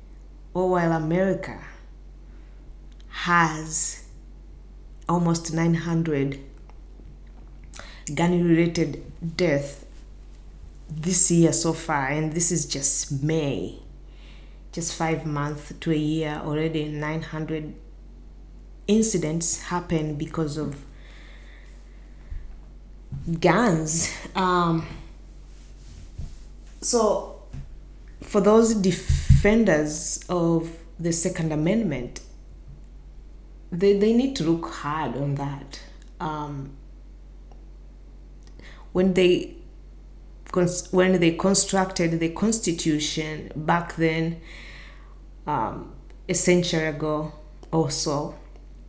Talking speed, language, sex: 75 wpm, English, female